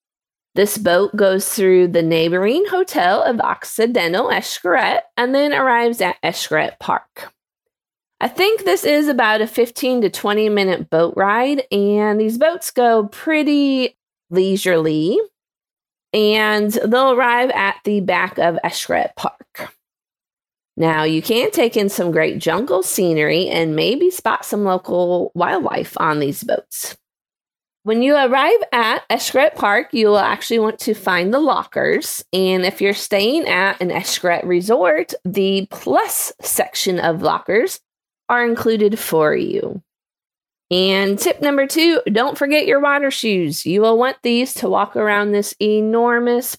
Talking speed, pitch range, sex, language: 140 wpm, 185-250 Hz, female, English